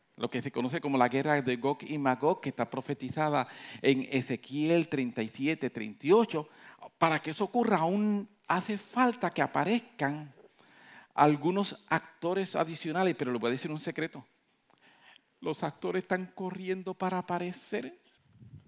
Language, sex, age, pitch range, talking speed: English, male, 50-69, 145-190 Hz, 140 wpm